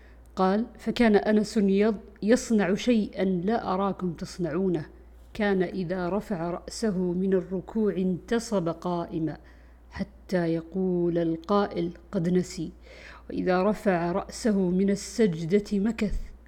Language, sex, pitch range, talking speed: Arabic, female, 170-210 Hz, 100 wpm